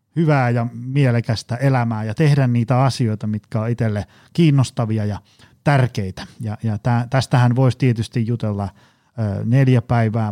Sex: male